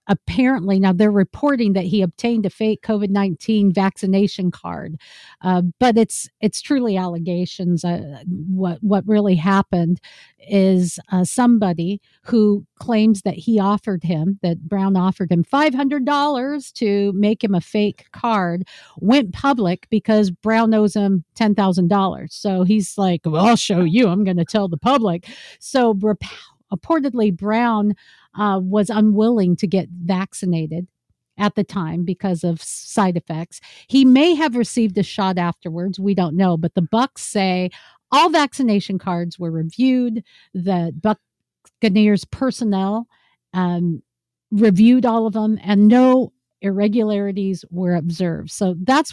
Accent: American